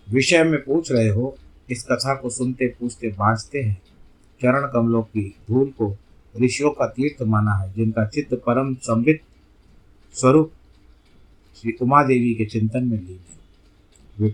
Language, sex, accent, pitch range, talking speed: Hindi, male, native, 100-125 Hz, 145 wpm